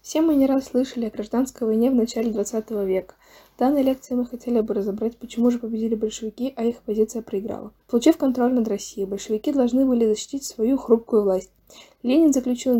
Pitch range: 210-255 Hz